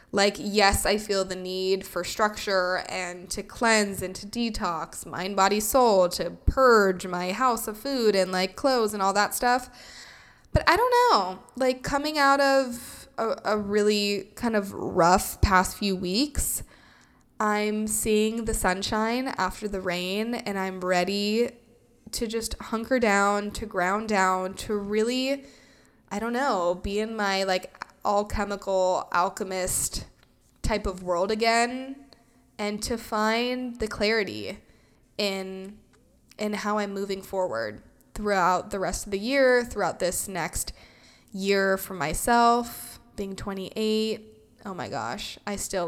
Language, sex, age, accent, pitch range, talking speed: English, female, 20-39, American, 190-230 Hz, 145 wpm